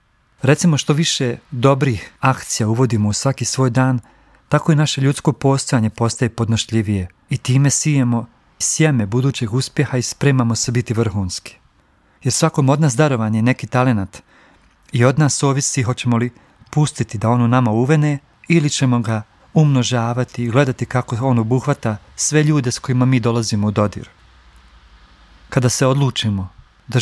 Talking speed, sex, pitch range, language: 150 wpm, male, 110-135 Hz, Croatian